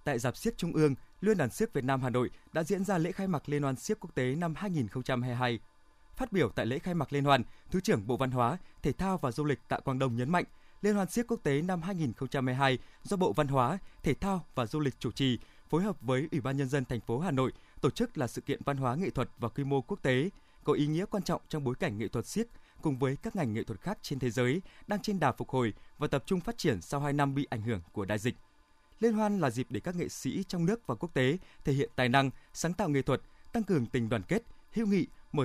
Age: 20-39